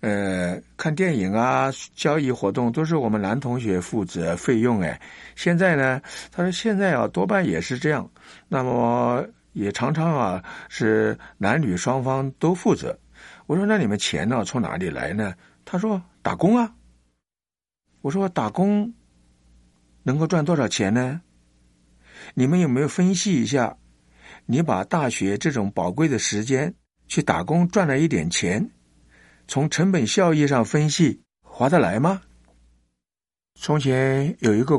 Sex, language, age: male, Chinese, 60-79